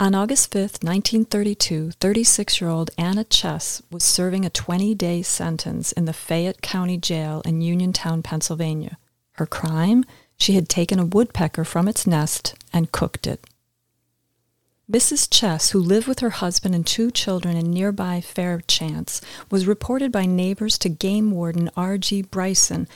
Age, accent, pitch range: 40-59, American, 170-205 Hz